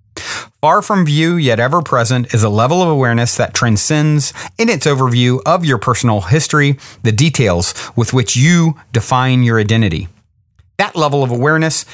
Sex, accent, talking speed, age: male, American, 160 wpm, 40-59